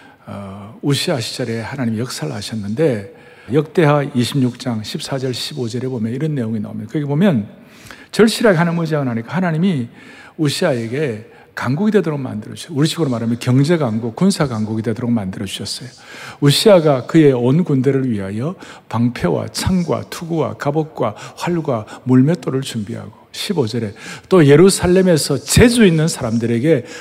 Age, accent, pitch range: 60-79, native, 120-180 Hz